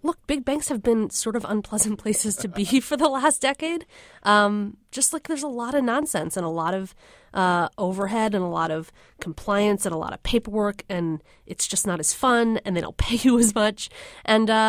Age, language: 30-49, English